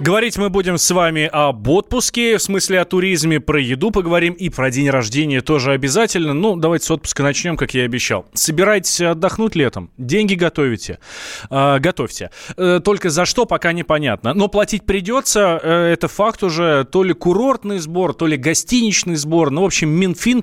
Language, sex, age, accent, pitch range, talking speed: Russian, male, 20-39, native, 135-185 Hz, 175 wpm